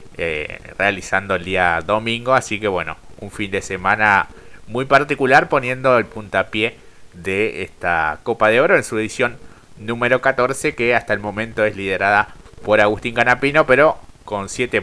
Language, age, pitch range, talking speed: Spanish, 30-49, 105-130 Hz, 160 wpm